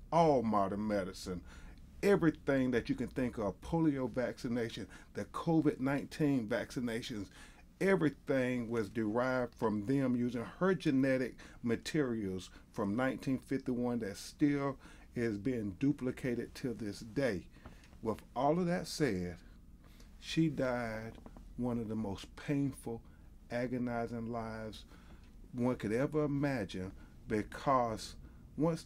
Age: 40-59